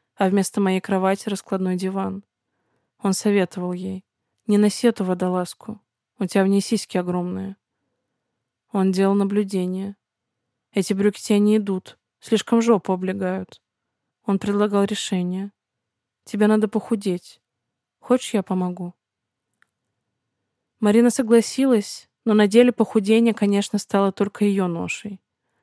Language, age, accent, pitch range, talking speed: Russian, 20-39, native, 190-210 Hz, 115 wpm